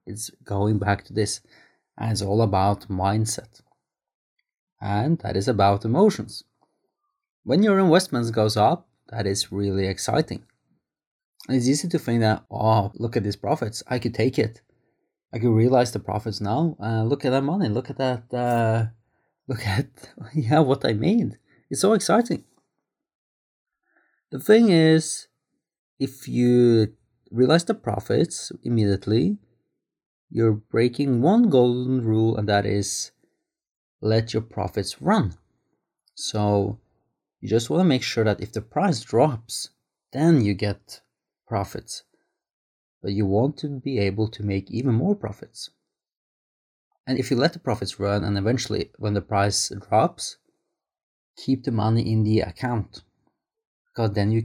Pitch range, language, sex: 105-135 Hz, English, male